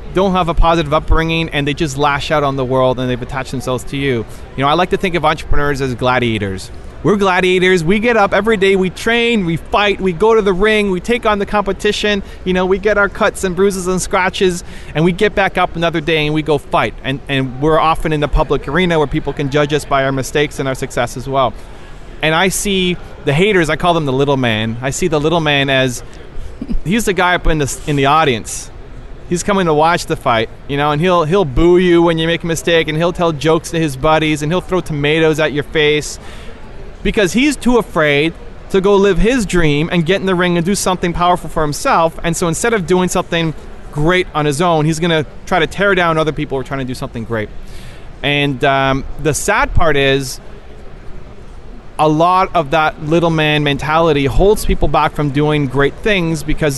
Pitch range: 145-185 Hz